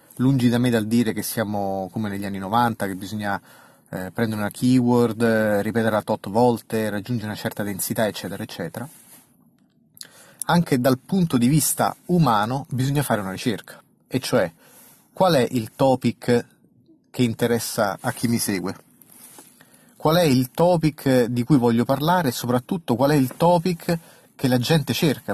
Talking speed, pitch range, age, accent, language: 155 wpm, 110-135 Hz, 30-49, native, Italian